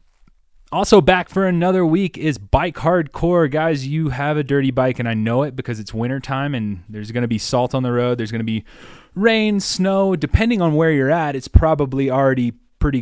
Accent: American